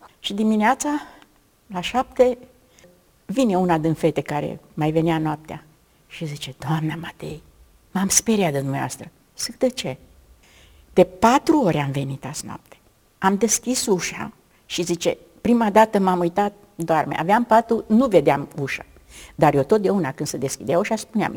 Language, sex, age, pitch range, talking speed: Romanian, female, 50-69, 160-225 Hz, 150 wpm